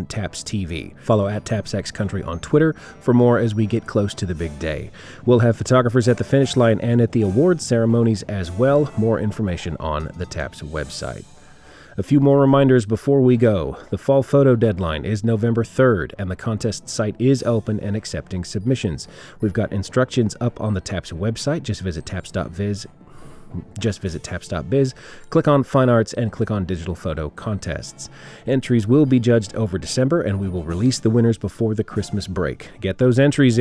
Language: English